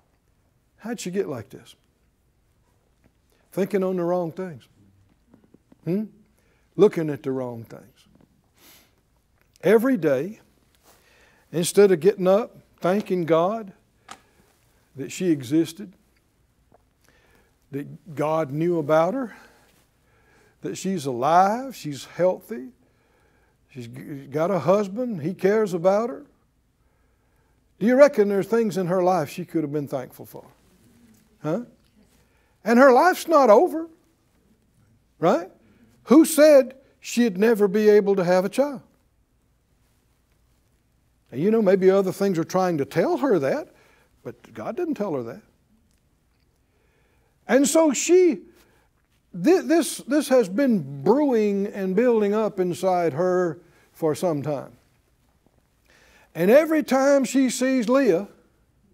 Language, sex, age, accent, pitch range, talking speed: English, male, 60-79, American, 165-235 Hz, 120 wpm